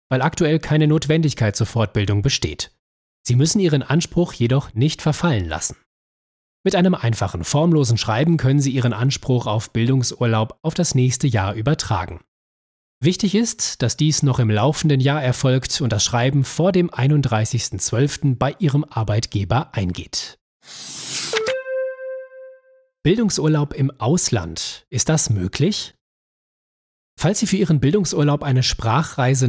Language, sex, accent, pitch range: German, male, German, 110-155 Hz